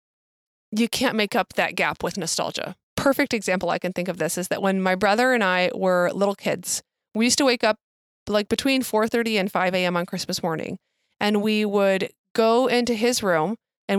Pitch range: 195-245 Hz